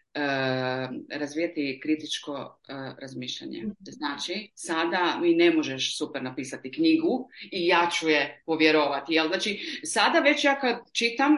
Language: Croatian